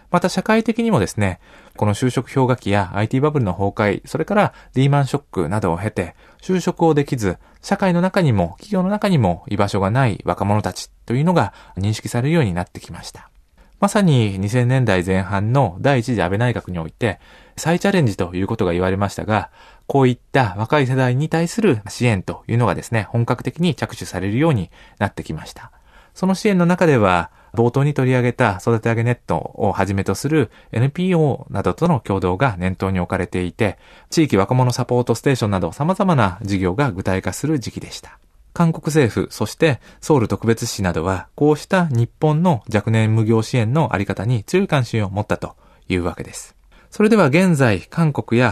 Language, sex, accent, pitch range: Japanese, male, native, 95-150 Hz